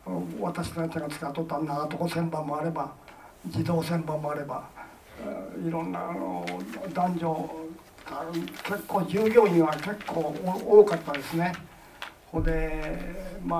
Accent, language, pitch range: native, Japanese, 155-195 Hz